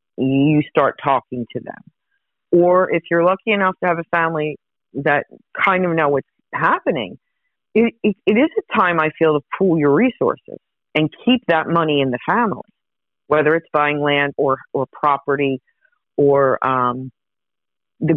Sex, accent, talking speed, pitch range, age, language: female, American, 160 wpm, 145-195 Hz, 40-59, English